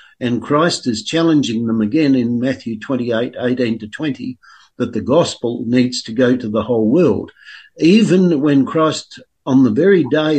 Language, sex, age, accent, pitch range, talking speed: English, male, 60-79, Australian, 120-155 Hz, 170 wpm